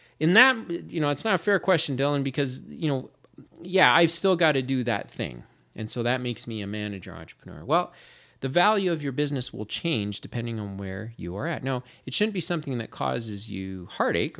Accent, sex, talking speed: American, male, 215 wpm